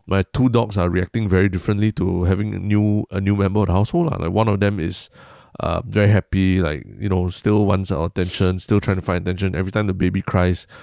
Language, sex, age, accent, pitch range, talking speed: English, male, 20-39, Malaysian, 90-105 Hz, 235 wpm